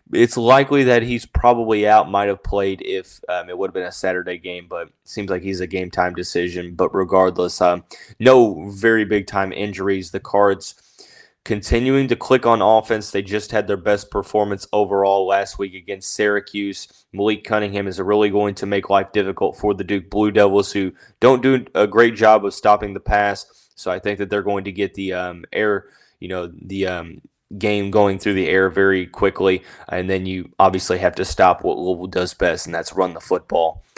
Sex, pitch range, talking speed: male, 95-110 Hz, 200 wpm